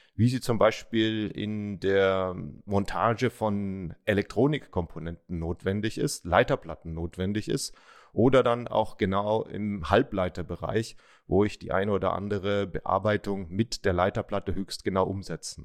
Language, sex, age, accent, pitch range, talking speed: German, male, 40-59, German, 100-120 Hz, 125 wpm